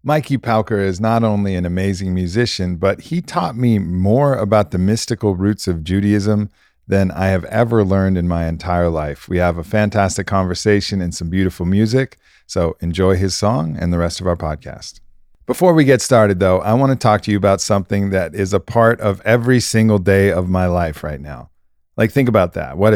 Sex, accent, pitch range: male, American, 90-110 Hz